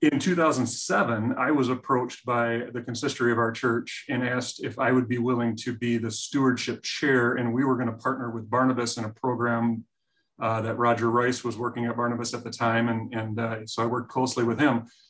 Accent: American